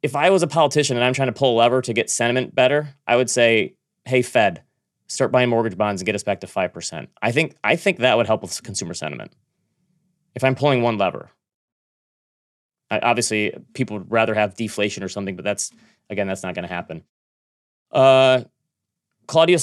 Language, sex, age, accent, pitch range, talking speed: English, male, 30-49, American, 105-130 Hz, 195 wpm